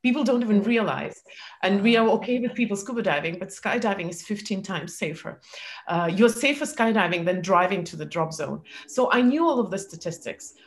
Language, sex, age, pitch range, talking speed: English, female, 30-49, 180-230 Hz, 195 wpm